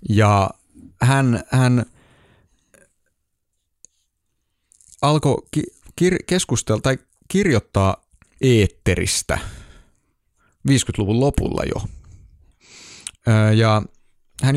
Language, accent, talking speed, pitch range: Finnish, native, 50 wpm, 95-125 Hz